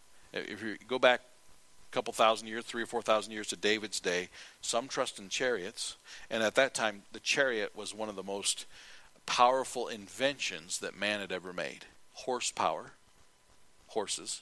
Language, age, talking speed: English, 50-69, 165 wpm